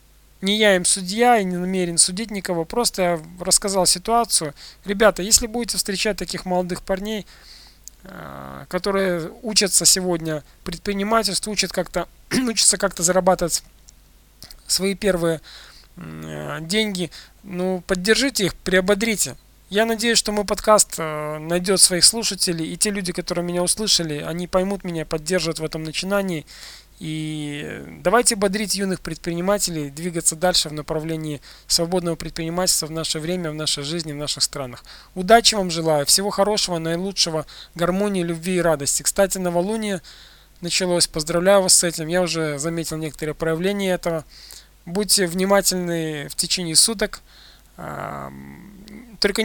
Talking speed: 125 wpm